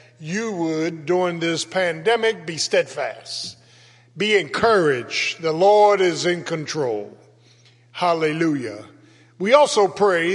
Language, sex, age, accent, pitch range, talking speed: English, male, 50-69, American, 145-190 Hz, 105 wpm